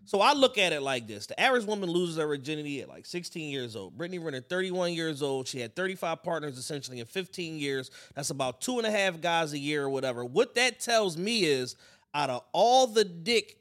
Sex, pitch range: male, 155-205 Hz